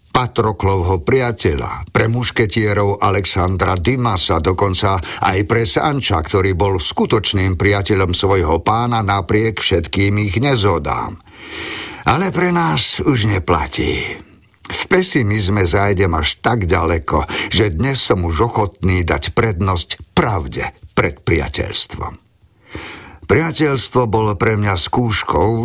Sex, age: male, 50-69